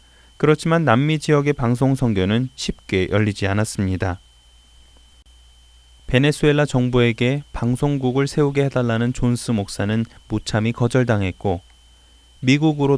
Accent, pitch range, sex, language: native, 95-135 Hz, male, Korean